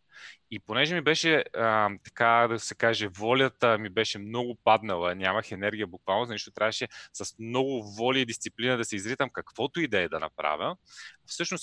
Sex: male